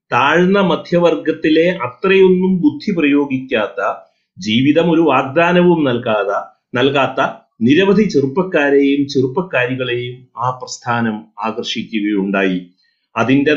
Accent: native